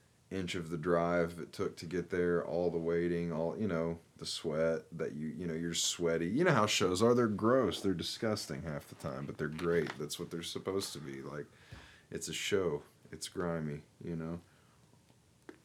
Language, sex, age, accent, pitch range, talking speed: English, male, 30-49, American, 80-120 Hz, 200 wpm